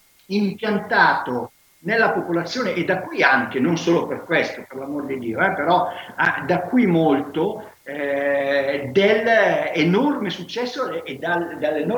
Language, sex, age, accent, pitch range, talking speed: Italian, male, 50-69, native, 150-200 Hz, 135 wpm